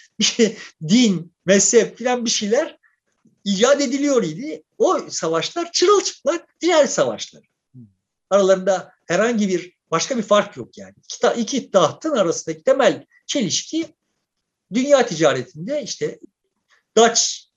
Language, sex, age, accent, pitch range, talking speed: Turkish, male, 50-69, native, 160-235 Hz, 100 wpm